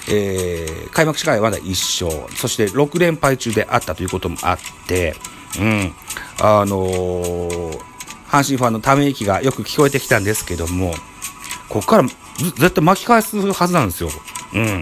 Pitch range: 100-170 Hz